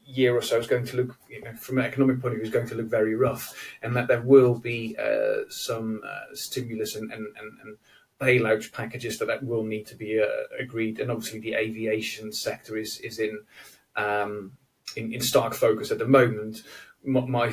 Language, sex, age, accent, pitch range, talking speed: English, male, 30-49, British, 110-130 Hz, 210 wpm